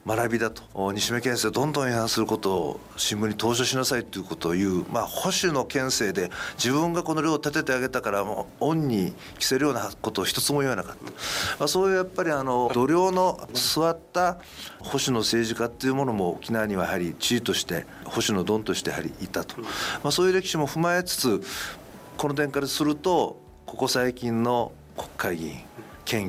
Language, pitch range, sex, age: Japanese, 110-145 Hz, male, 50-69